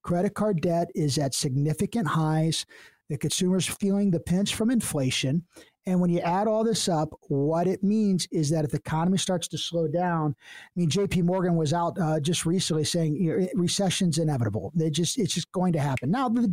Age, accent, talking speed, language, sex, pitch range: 50-69, American, 205 wpm, English, male, 160-210 Hz